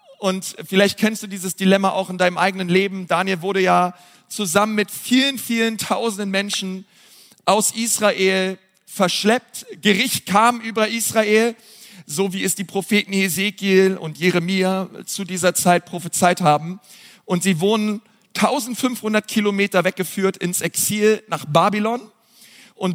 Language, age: German, 40-59